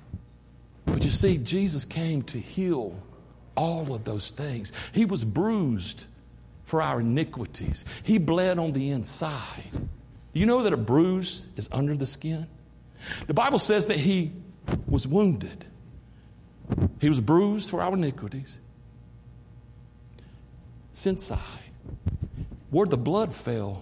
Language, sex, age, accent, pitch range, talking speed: English, male, 60-79, American, 105-170 Hz, 125 wpm